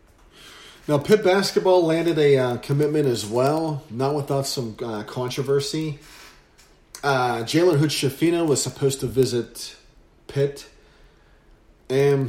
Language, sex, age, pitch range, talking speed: English, male, 40-59, 120-145 Hz, 110 wpm